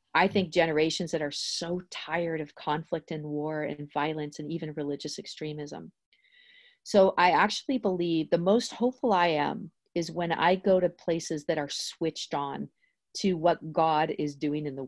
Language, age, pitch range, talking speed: English, 40-59, 155-185 Hz, 175 wpm